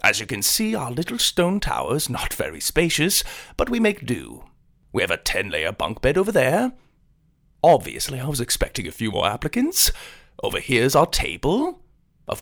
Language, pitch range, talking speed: English, 120-180 Hz, 175 wpm